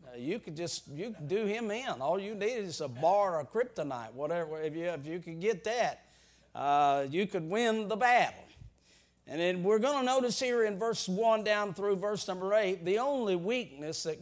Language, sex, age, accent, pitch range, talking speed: English, male, 50-69, American, 160-205 Hz, 205 wpm